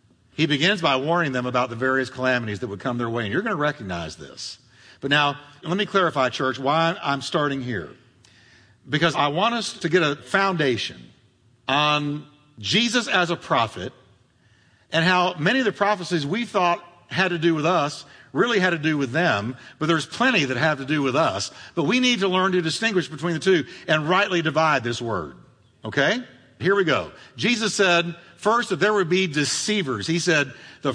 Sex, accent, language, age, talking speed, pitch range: male, American, English, 50-69, 195 wpm, 125-200 Hz